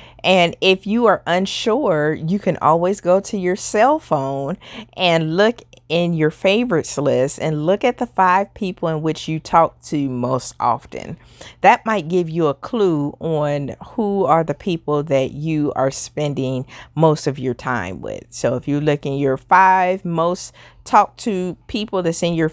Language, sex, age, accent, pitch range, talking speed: English, female, 40-59, American, 135-200 Hz, 175 wpm